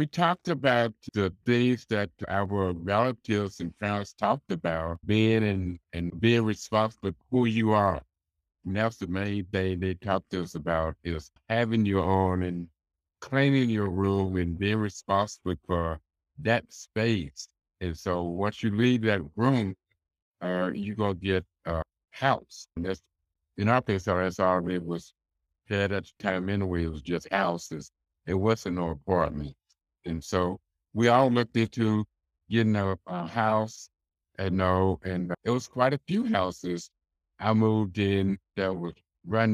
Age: 60-79